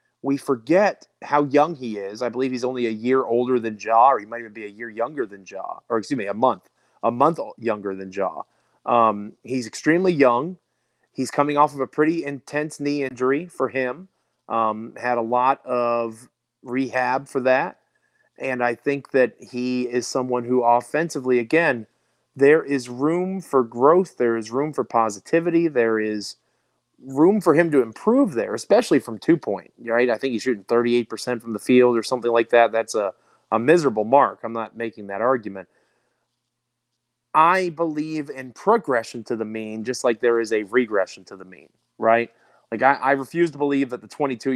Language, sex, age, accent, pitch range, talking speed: English, male, 30-49, American, 115-140 Hz, 185 wpm